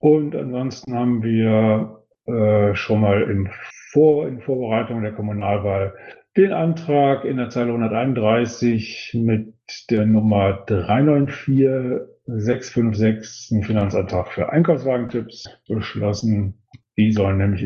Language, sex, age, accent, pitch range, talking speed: German, male, 50-69, German, 105-130 Hz, 110 wpm